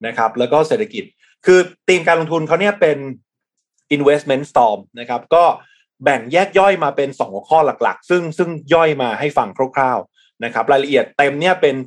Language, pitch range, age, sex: Thai, 130-180 Hz, 20-39, male